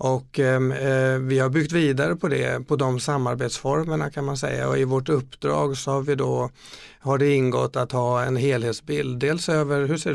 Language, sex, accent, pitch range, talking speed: Swedish, male, native, 125-145 Hz, 195 wpm